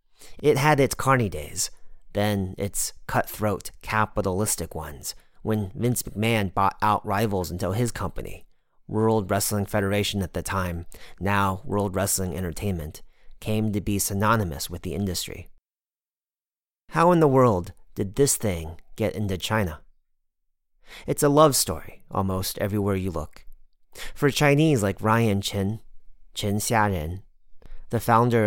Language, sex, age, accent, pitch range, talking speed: English, male, 30-49, American, 95-115 Hz, 135 wpm